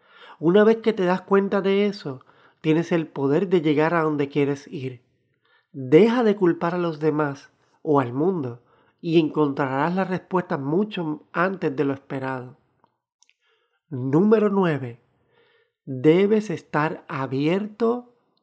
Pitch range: 150-195 Hz